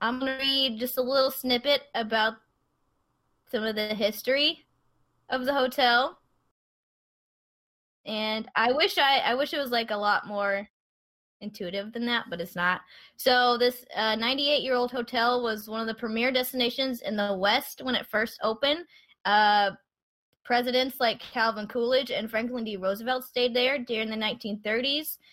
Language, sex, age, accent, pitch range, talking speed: English, female, 10-29, American, 210-255 Hz, 155 wpm